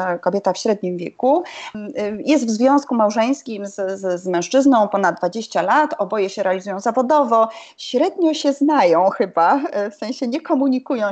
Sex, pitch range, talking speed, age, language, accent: female, 185-275 Hz, 145 wpm, 30-49, Polish, native